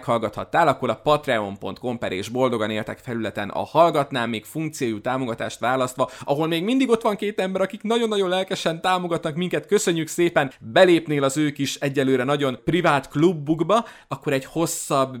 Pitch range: 110-145 Hz